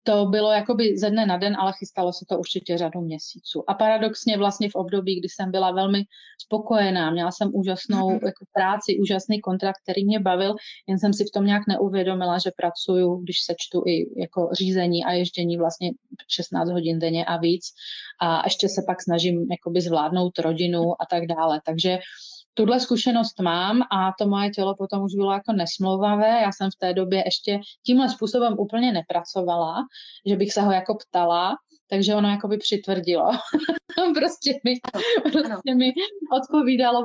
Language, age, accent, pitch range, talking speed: Czech, 30-49, native, 185-220 Hz, 165 wpm